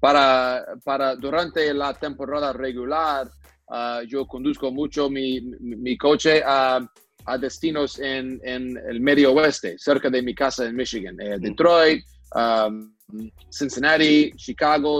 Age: 30-49